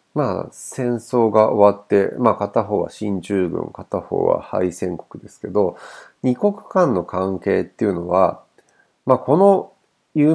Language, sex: Japanese, male